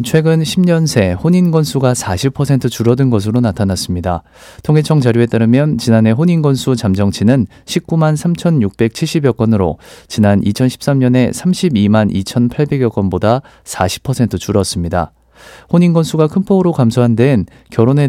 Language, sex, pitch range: Korean, male, 100-145 Hz